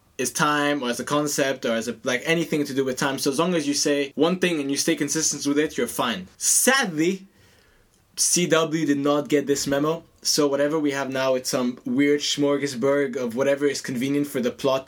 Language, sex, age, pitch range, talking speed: English, male, 20-39, 125-150 Hz, 215 wpm